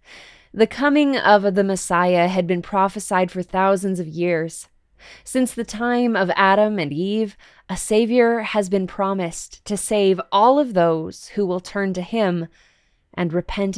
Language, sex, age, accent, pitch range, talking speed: English, female, 20-39, American, 175-210 Hz, 155 wpm